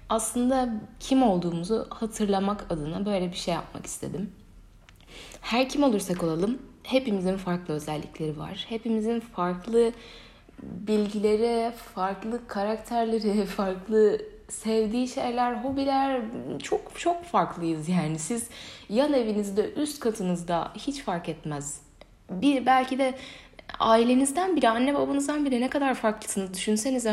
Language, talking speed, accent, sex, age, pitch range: Turkish, 115 wpm, native, female, 10-29, 170-225 Hz